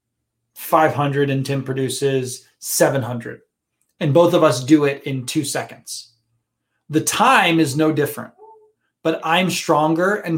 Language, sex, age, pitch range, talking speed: English, male, 20-39, 130-160 Hz, 145 wpm